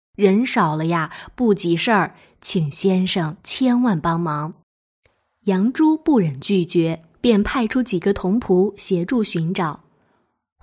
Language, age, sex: Chinese, 20-39, female